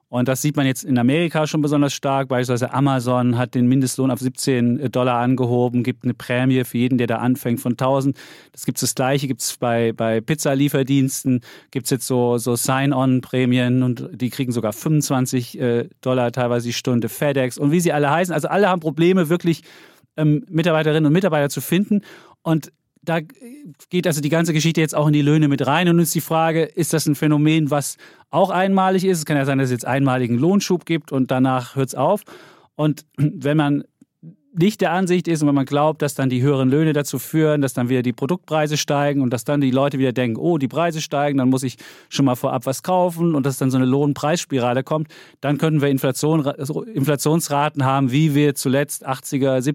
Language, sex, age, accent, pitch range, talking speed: German, male, 40-59, German, 130-155 Hz, 210 wpm